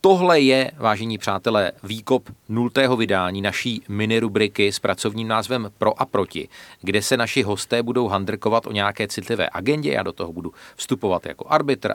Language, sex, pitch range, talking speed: Czech, male, 100-130 Hz, 160 wpm